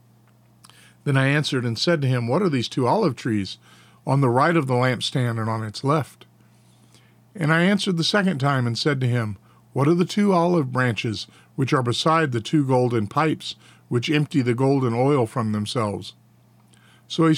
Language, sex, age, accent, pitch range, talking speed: English, male, 50-69, American, 115-150 Hz, 190 wpm